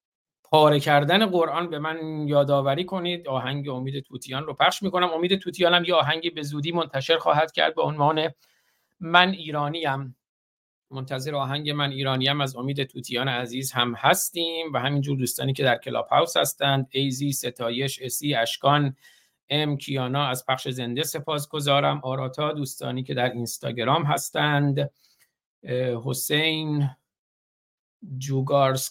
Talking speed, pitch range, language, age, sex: 130 wpm, 125-145 Hz, Persian, 50-69, male